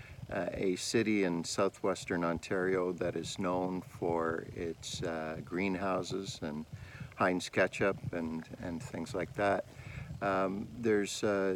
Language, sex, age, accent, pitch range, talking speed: English, male, 50-69, American, 85-115 Hz, 125 wpm